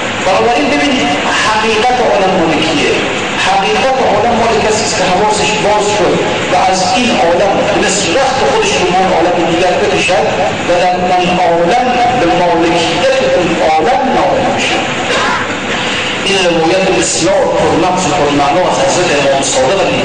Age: 50-69